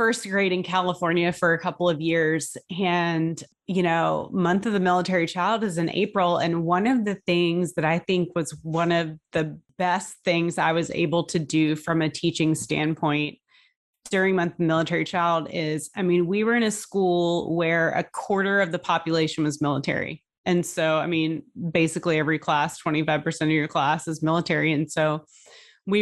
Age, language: 30-49, English